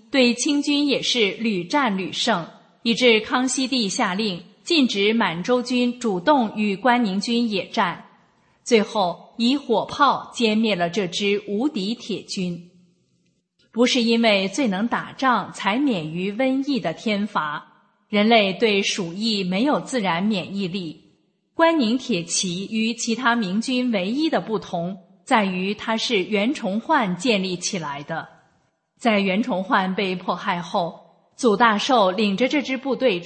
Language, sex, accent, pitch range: English, female, Chinese, 190-240 Hz